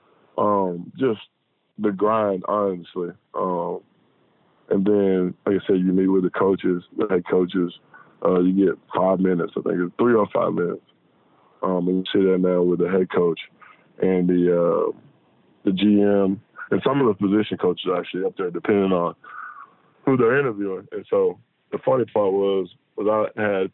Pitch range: 95-115 Hz